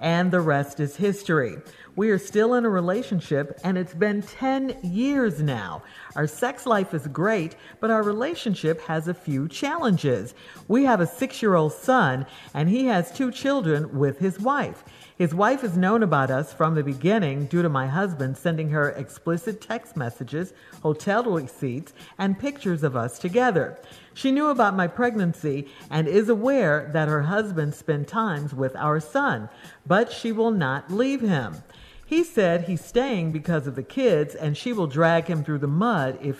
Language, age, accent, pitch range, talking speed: English, 50-69, American, 150-230 Hz, 175 wpm